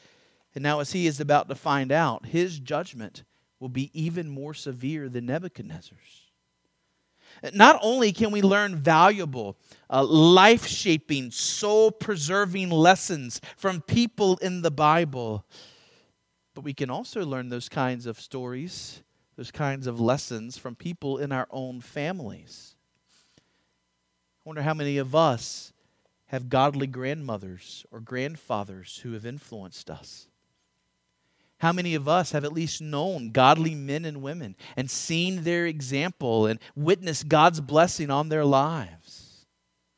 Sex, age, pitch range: male, 40-59, 130-170 Hz